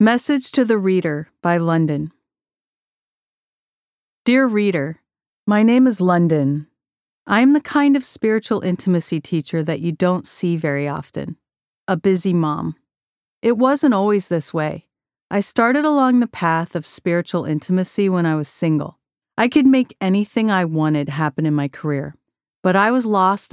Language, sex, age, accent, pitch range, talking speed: English, female, 40-59, American, 155-205 Hz, 155 wpm